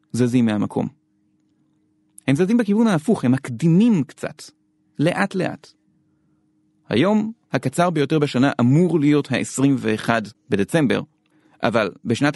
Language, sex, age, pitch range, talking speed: Hebrew, male, 30-49, 130-165 Hz, 100 wpm